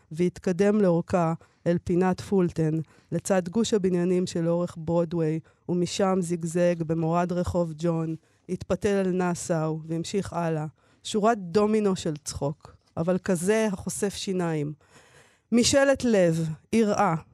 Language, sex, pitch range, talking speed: Hebrew, female, 165-210 Hz, 105 wpm